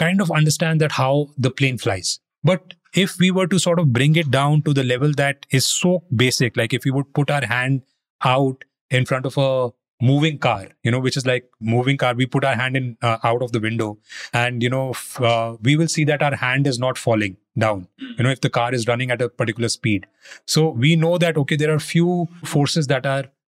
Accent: Indian